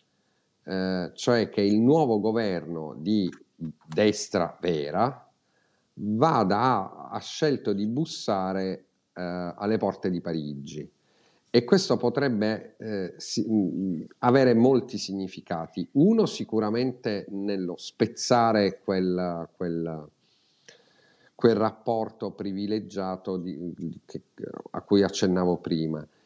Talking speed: 100 wpm